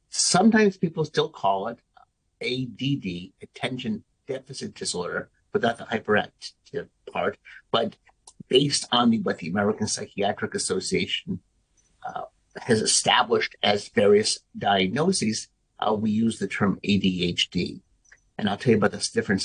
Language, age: English, 50-69